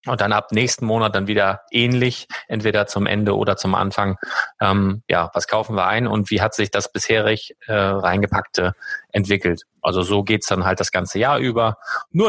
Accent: German